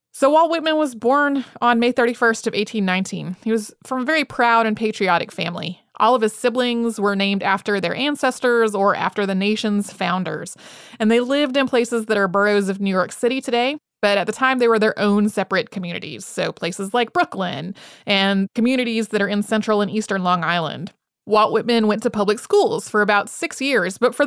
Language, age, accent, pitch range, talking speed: English, 30-49, American, 200-245 Hz, 205 wpm